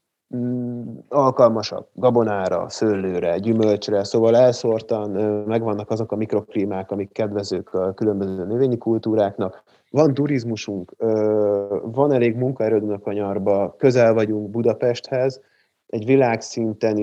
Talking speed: 100 wpm